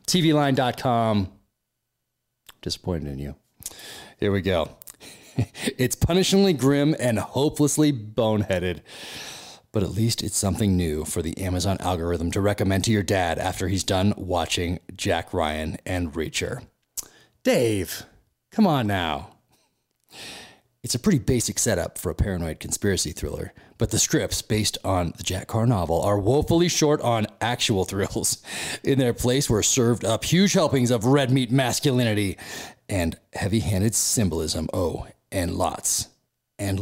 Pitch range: 90-130 Hz